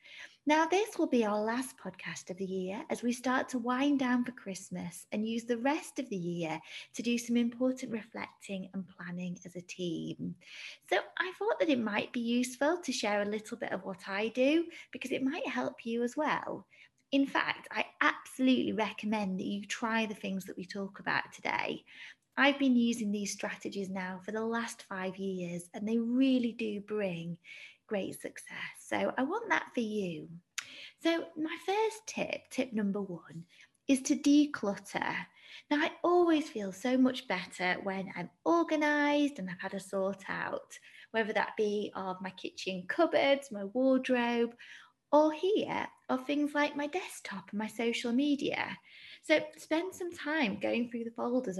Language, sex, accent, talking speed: English, female, British, 175 wpm